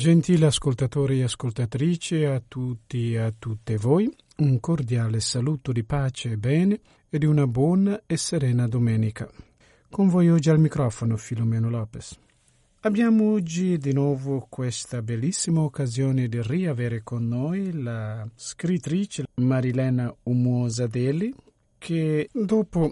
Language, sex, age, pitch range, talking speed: Italian, male, 50-69, 120-155 Hz, 125 wpm